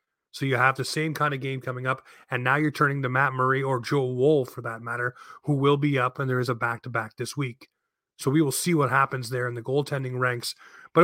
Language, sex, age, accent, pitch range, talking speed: English, male, 30-49, American, 125-145 Hz, 250 wpm